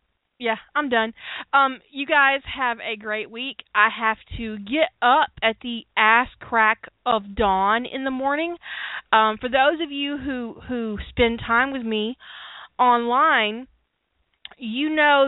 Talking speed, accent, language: 150 wpm, American, English